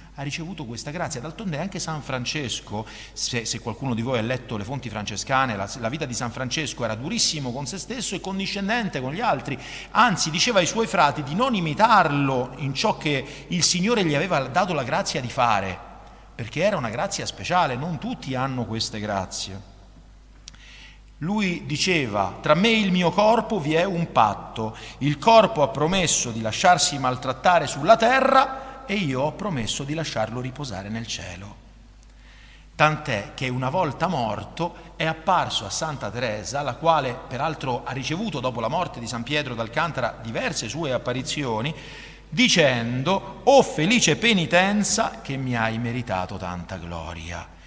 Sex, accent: male, native